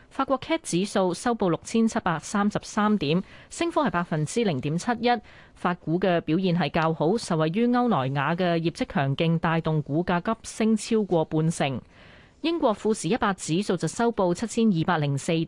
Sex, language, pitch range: female, Chinese, 155-205 Hz